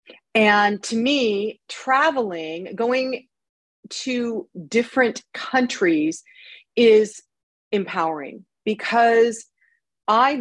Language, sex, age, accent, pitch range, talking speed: English, female, 40-59, American, 175-230 Hz, 70 wpm